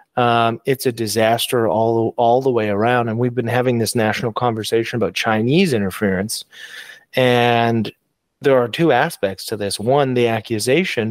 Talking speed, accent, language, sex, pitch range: 155 wpm, American, English, male, 110-125 Hz